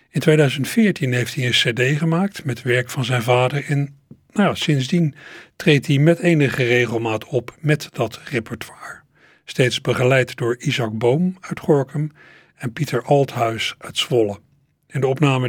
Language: Dutch